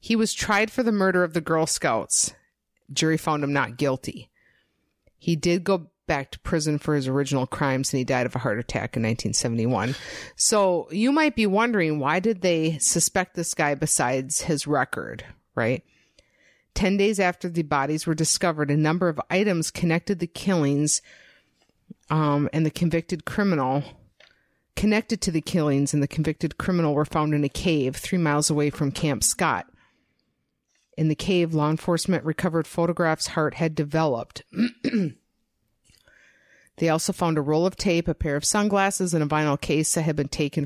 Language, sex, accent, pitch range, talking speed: English, female, American, 145-175 Hz, 170 wpm